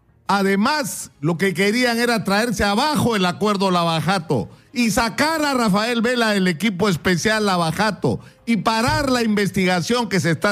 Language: Spanish